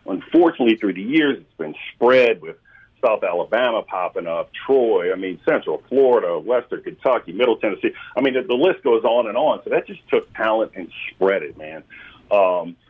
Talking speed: 185 wpm